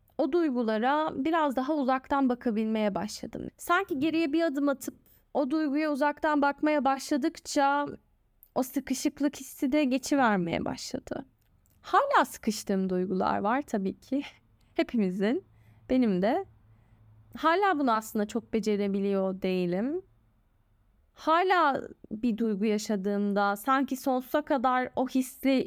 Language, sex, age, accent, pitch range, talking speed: Turkish, female, 10-29, native, 215-310 Hz, 110 wpm